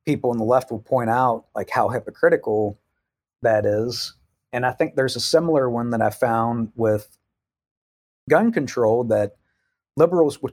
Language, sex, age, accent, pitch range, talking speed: English, male, 40-59, American, 115-140 Hz, 160 wpm